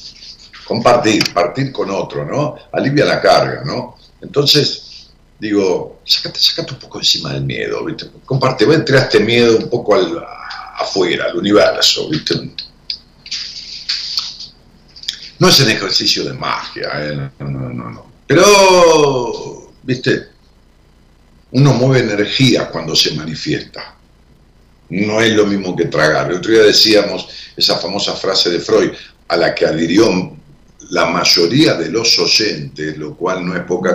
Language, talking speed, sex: Spanish, 140 wpm, male